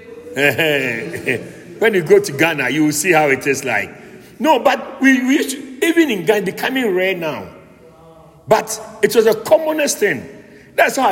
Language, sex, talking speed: English, male, 175 wpm